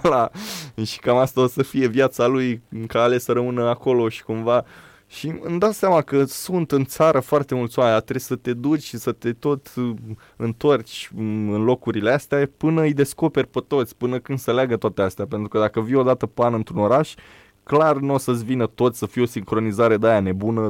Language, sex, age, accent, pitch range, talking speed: Romanian, male, 20-39, native, 110-140 Hz, 210 wpm